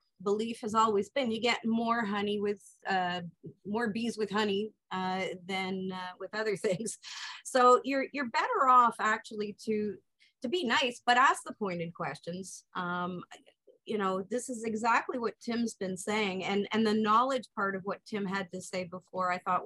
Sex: female